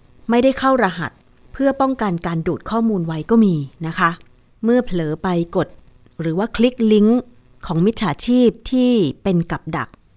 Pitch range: 165-215 Hz